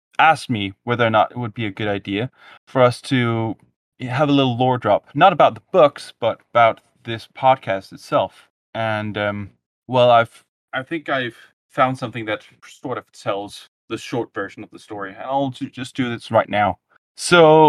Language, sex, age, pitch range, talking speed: English, male, 30-49, 105-135 Hz, 185 wpm